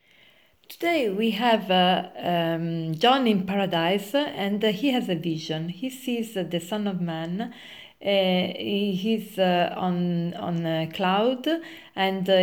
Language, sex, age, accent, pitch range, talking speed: English, female, 40-59, Italian, 175-215 Hz, 140 wpm